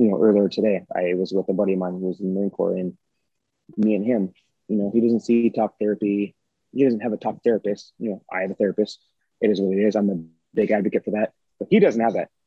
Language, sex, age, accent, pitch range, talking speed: English, male, 30-49, American, 100-120 Hz, 270 wpm